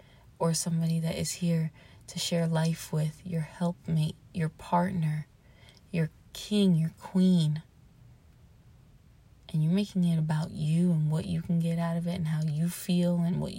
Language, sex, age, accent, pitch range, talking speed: English, female, 20-39, American, 155-185 Hz, 165 wpm